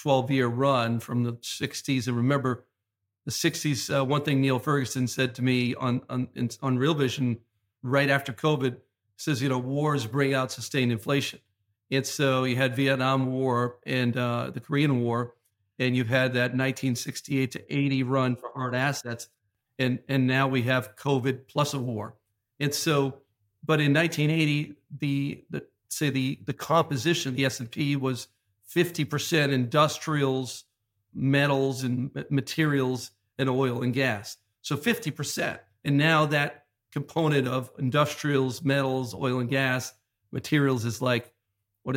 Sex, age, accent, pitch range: male, 50-69, American, 125-145 Hz